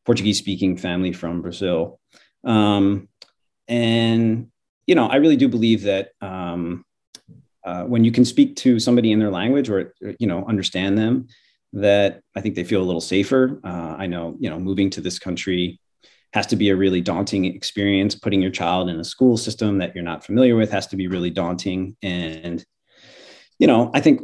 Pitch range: 90-105 Hz